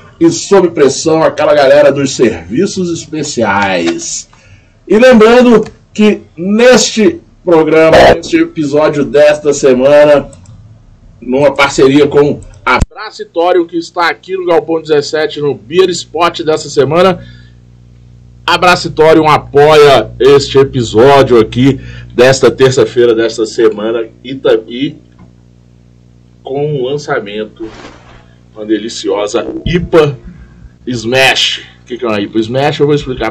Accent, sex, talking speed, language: Brazilian, male, 115 wpm, Portuguese